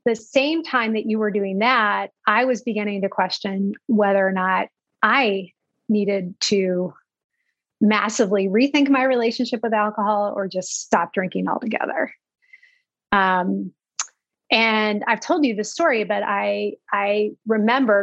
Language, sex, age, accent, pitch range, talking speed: English, female, 30-49, American, 200-260 Hz, 135 wpm